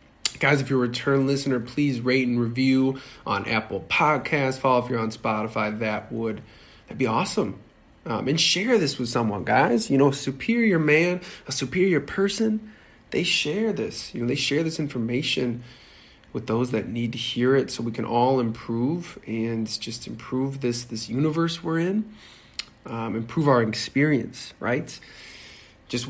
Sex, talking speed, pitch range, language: male, 170 wpm, 115-150 Hz, English